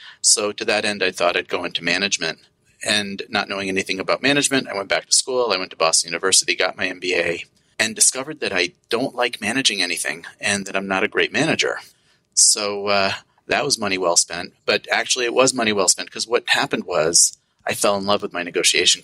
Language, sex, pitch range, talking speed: English, male, 90-115 Hz, 220 wpm